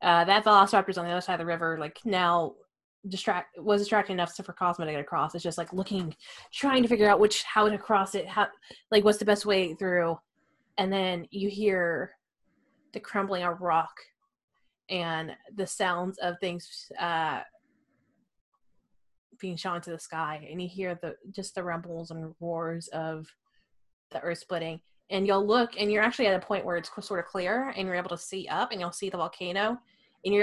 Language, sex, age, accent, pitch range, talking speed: English, female, 20-39, American, 170-210 Hz, 195 wpm